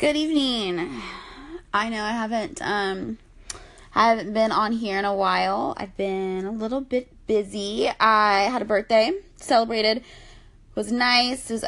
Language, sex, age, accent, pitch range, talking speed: English, female, 20-39, American, 180-230 Hz, 160 wpm